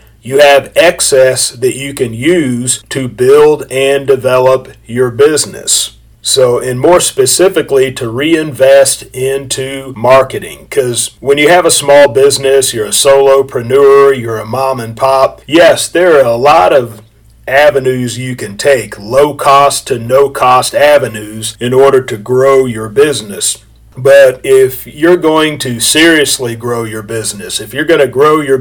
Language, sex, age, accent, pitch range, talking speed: English, male, 40-59, American, 120-145 Hz, 155 wpm